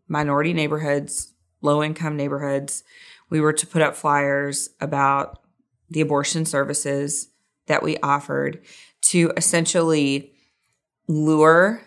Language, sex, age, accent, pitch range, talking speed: English, female, 30-49, American, 145-180 Hz, 100 wpm